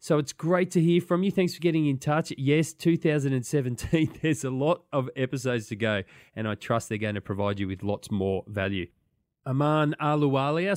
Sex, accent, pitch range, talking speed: male, Australian, 115-150 Hz, 195 wpm